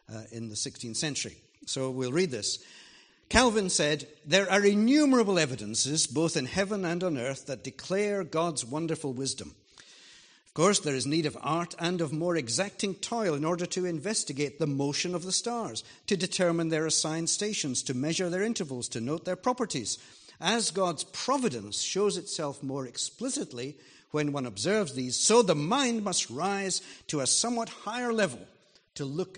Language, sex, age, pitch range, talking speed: English, male, 60-79, 145-205 Hz, 170 wpm